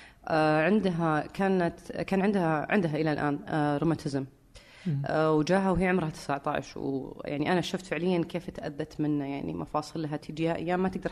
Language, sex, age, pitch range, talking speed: Arabic, female, 30-49, 160-195 Hz, 135 wpm